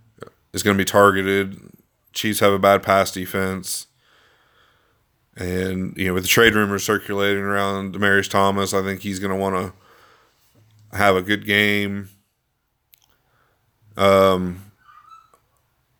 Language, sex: English, male